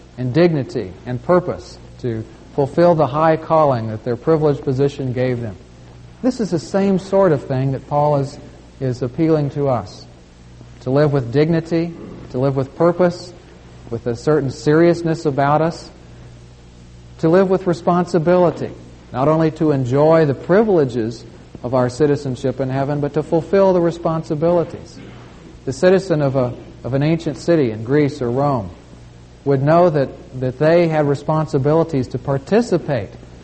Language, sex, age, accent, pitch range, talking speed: English, male, 40-59, American, 120-165 Hz, 150 wpm